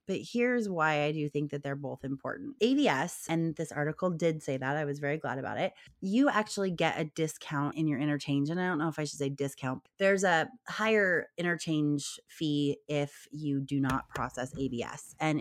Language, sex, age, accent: English, female, 20-39, American